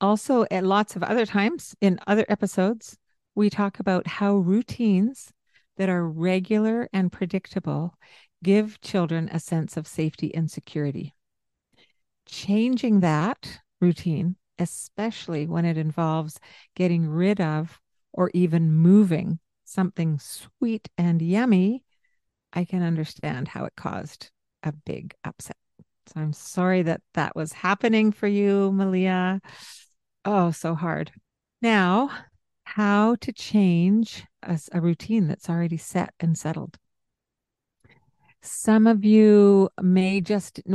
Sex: female